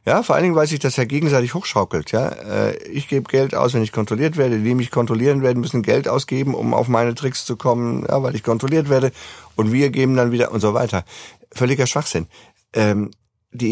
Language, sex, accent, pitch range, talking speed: German, male, German, 110-145 Hz, 220 wpm